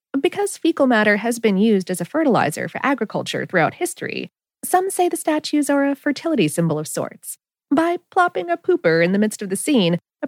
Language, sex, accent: English, female, American